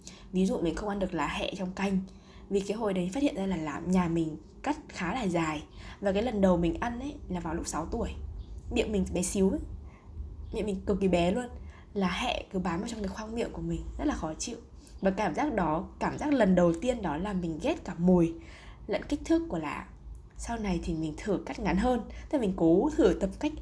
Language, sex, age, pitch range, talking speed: Vietnamese, female, 20-39, 170-215 Hz, 245 wpm